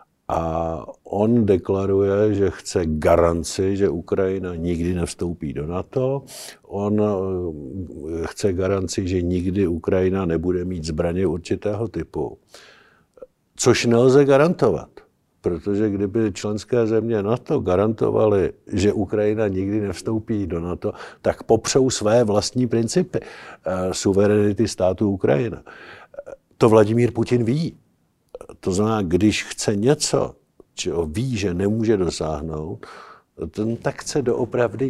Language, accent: Czech, native